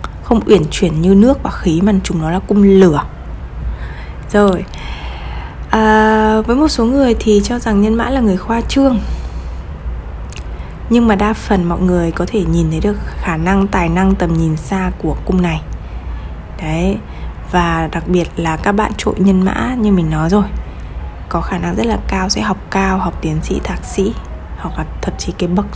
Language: Vietnamese